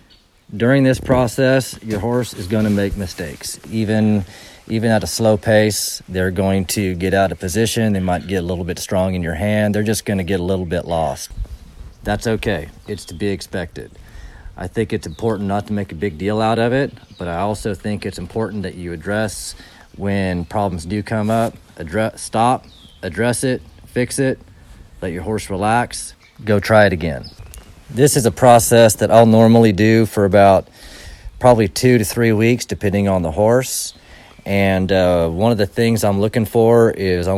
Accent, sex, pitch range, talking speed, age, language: American, male, 95-115 Hz, 185 wpm, 40-59, English